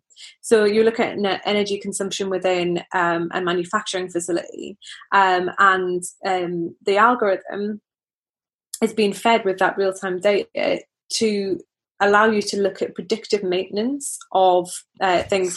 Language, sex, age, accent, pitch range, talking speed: English, female, 20-39, British, 185-225 Hz, 130 wpm